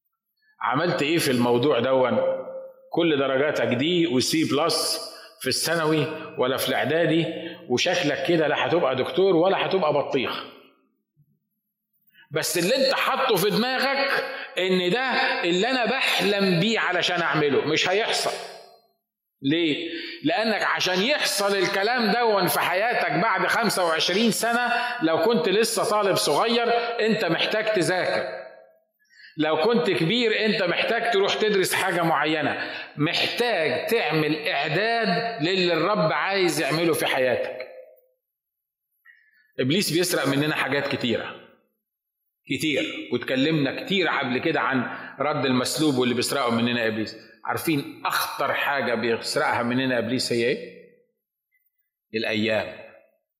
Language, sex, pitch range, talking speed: Arabic, male, 150-240 Hz, 115 wpm